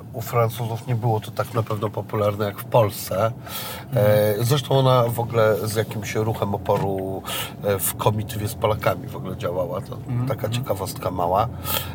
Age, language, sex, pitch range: 40-59, Polish, male, 105-125 Hz